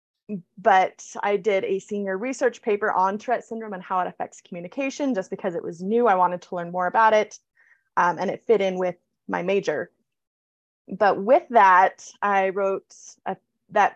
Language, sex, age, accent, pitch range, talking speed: English, female, 20-39, American, 180-215 Hz, 175 wpm